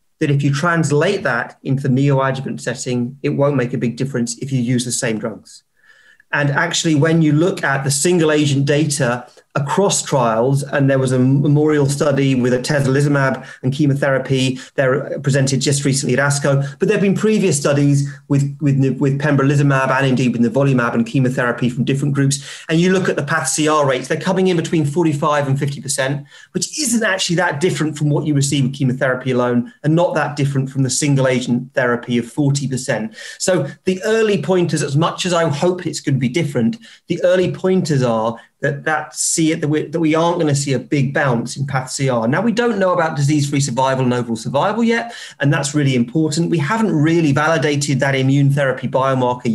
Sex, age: male, 30-49